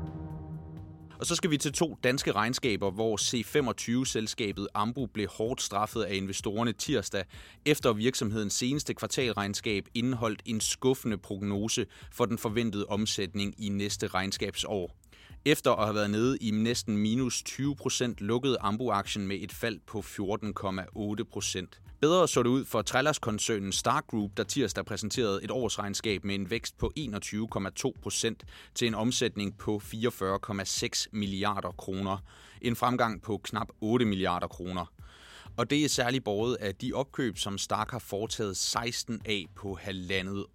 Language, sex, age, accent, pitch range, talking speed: Danish, male, 30-49, native, 100-120 Hz, 145 wpm